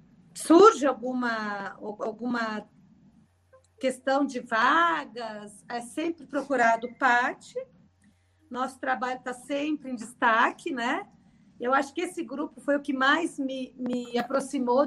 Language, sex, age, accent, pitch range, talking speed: Portuguese, female, 40-59, Brazilian, 220-270 Hz, 115 wpm